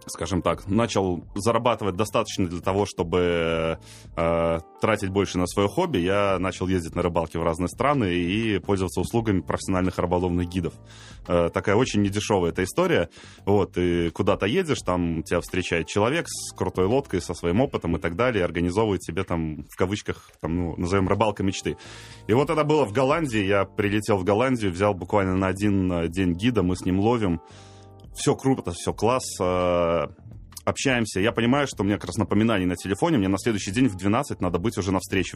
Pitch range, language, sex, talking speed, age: 90-110 Hz, Russian, male, 180 wpm, 20-39